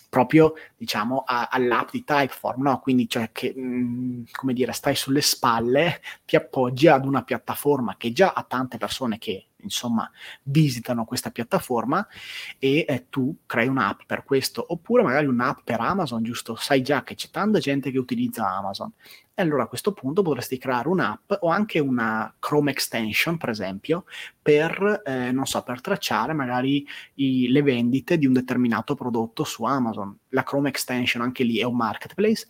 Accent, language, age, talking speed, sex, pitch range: native, Italian, 30-49, 165 wpm, male, 120-150 Hz